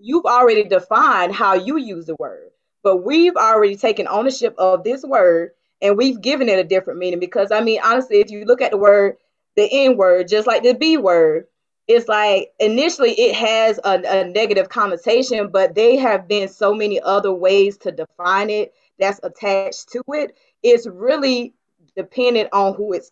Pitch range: 190-260 Hz